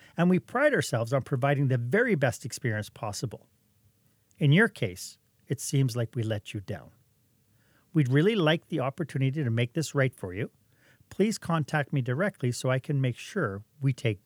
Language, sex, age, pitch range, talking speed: English, male, 40-59, 110-145 Hz, 180 wpm